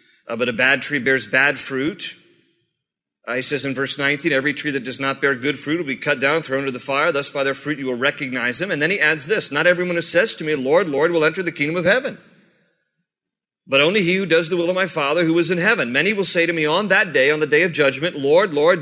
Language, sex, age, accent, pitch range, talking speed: English, male, 40-59, American, 150-185 Hz, 275 wpm